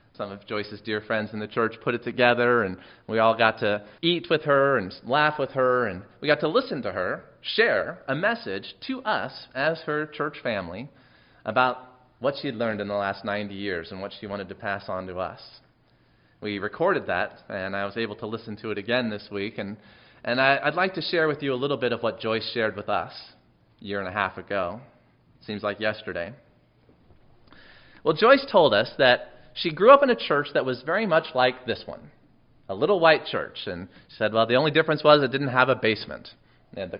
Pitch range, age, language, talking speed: 105-150 Hz, 30-49, English, 220 wpm